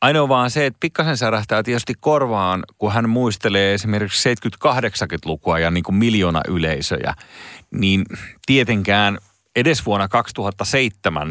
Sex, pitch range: male, 90-115 Hz